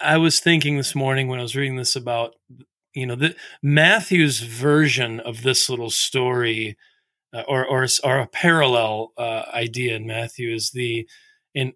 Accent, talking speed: American, 170 wpm